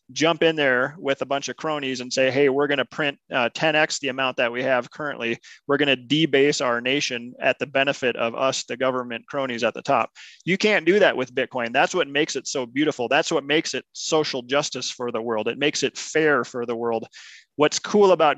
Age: 30-49